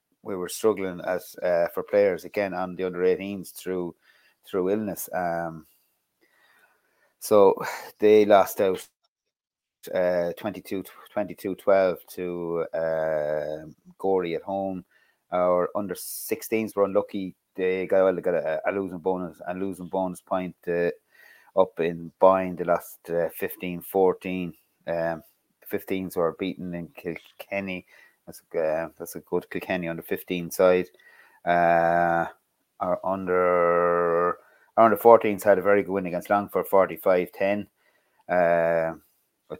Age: 30-49